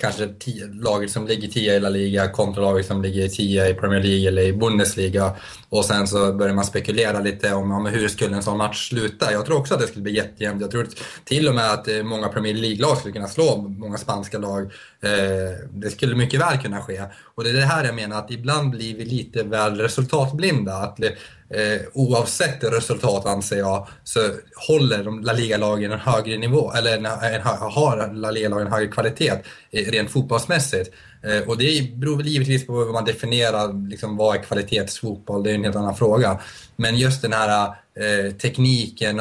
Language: Swedish